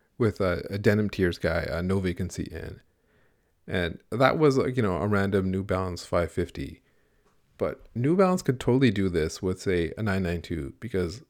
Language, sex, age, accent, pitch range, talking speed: English, male, 30-49, American, 85-110 Hz, 170 wpm